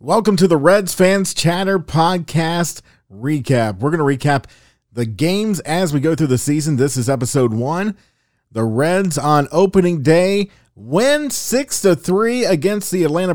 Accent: American